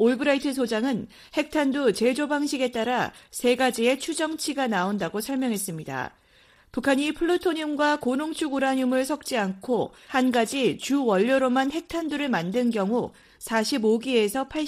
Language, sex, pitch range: Korean, female, 225-285 Hz